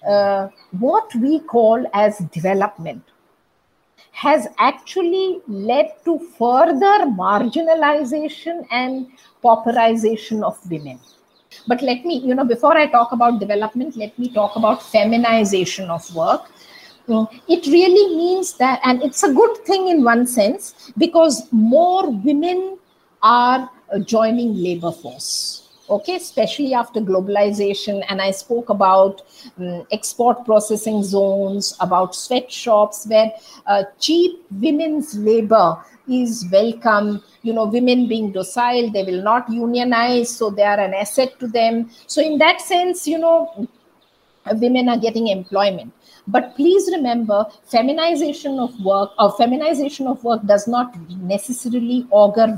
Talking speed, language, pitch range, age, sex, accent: 130 wpm, English, 205-290 Hz, 50-69, female, Indian